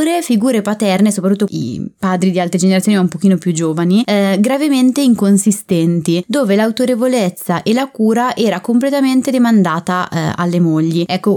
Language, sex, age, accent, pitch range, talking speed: Italian, female, 20-39, native, 170-205 Hz, 150 wpm